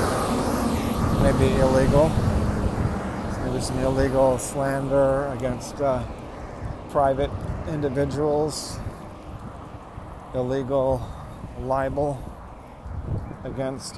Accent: American